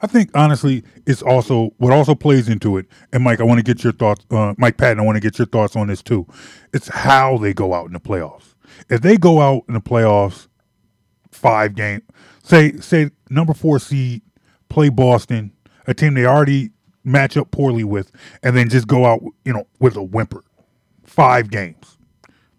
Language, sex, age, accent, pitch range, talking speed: English, male, 20-39, American, 110-135 Hz, 195 wpm